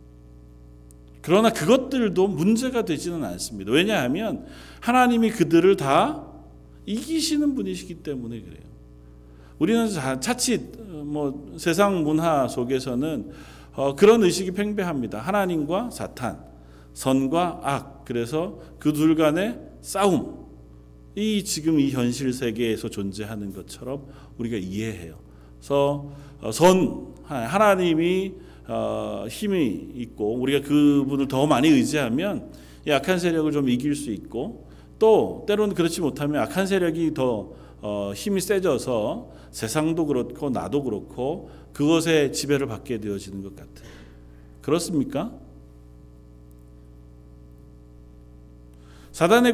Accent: native